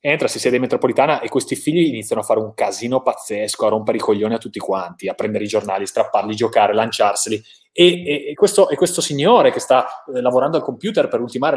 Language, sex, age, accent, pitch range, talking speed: Italian, male, 30-49, native, 105-175 Hz, 215 wpm